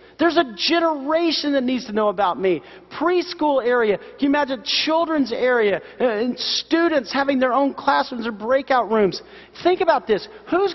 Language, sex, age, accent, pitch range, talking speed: English, male, 40-59, American, 190-290 Hz, 160 wpm